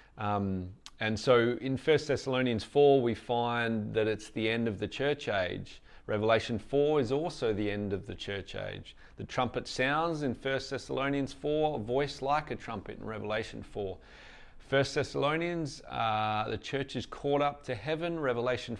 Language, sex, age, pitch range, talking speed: English, male, 40-59, 105-135 Hz, 170 wpm